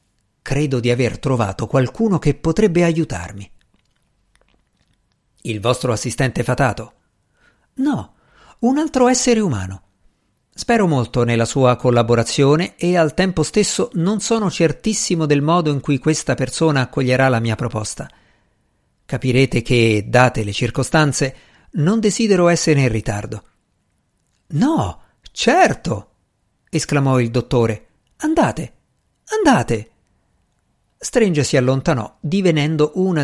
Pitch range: 120-175 Hz